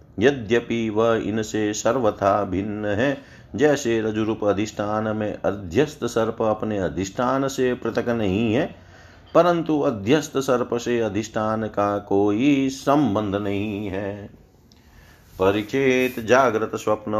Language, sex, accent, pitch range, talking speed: Hindi, male, native, 105-120 Hz, 110 wpm